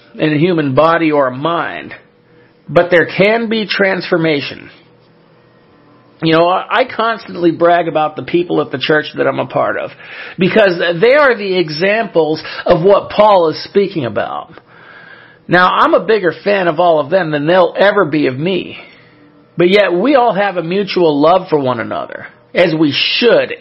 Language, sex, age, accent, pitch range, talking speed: English, male, 50-69, American, 155-195 Hz, 175 wpm